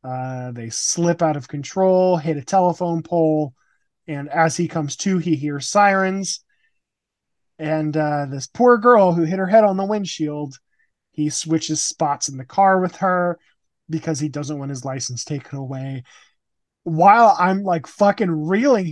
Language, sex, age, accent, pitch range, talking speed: English, male, 20-39, American, 160-215 Hz, 160 wpm